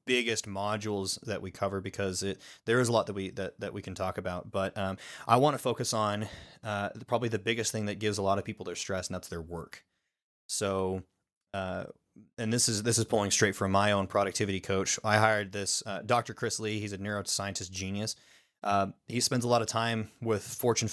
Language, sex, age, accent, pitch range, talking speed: English, male, 20-39, American, 100-115 Hz, 220 wpm